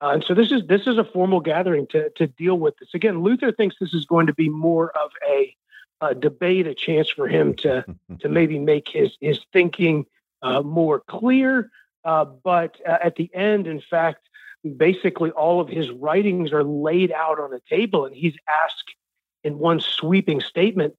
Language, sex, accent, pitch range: English, male, American, 155-190 Hz